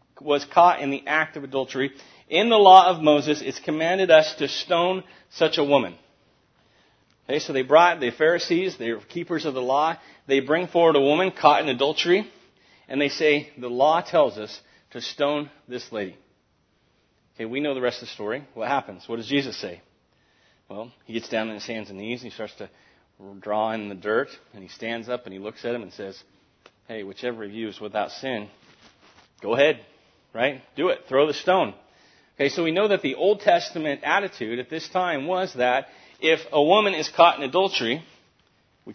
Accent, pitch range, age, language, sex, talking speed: American, 115-160 Hz, 40-59, English, male, 195 wpm